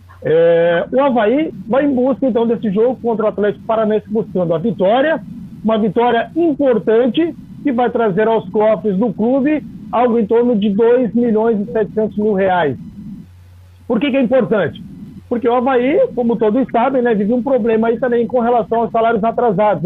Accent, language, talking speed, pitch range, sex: Brazilian, Portuguese, 175 wpm, 195-235 Hz, male